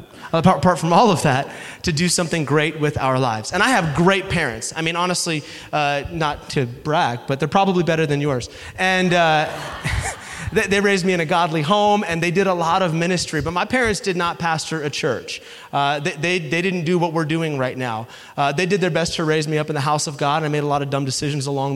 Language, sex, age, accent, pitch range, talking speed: English, male, 30-49, American, 155-210 Hz, 245 wpm